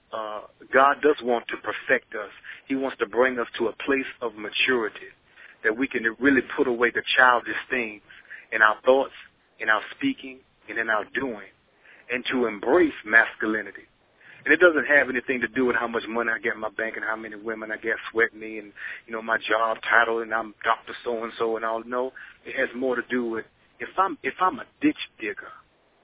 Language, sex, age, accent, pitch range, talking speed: English, male, 40-59, American, 110-130 Hz, 205 wpm